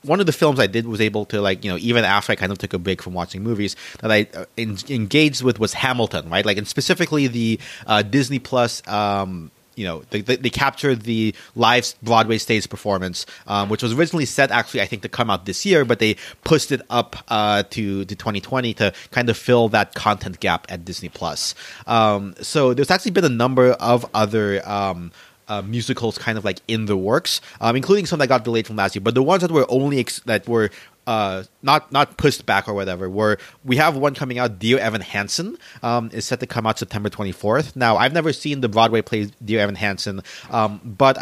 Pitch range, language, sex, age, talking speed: 100-125 Hz, English, male, 30-49, 225 wpm